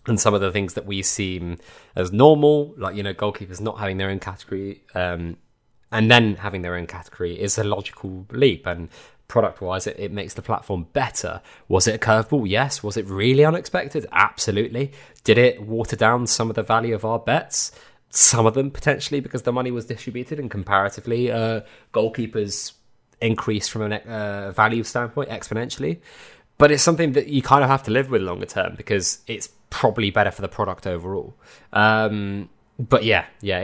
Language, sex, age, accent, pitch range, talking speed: English, male, 20-39, British, 95-120 Hz, 185 wpm